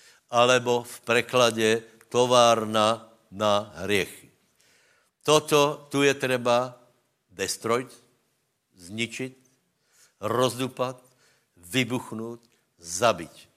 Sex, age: male, 60-79